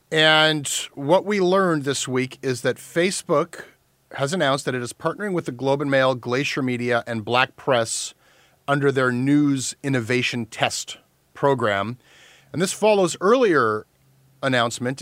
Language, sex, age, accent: English, male, 30-49, American